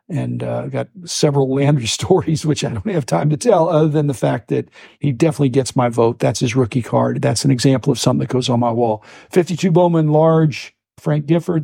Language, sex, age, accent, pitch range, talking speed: English, male, 50-69, American, 125-150 Hz, 220 wpm